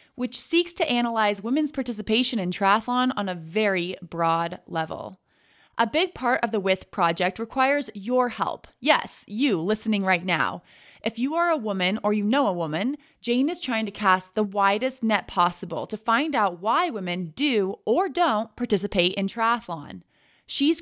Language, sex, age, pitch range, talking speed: English, female, 30-49, 185-245 Hz, 170 wpm